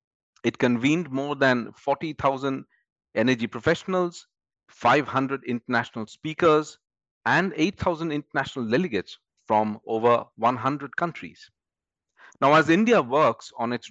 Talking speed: 105 wpm